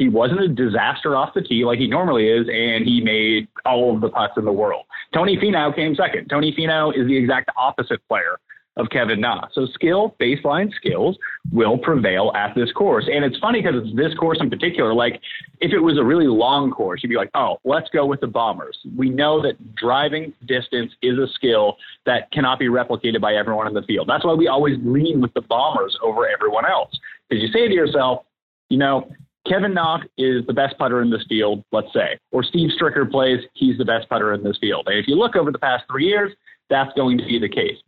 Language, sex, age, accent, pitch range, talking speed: English, male, 30-49, American, 120-170 Hz, 225 wpm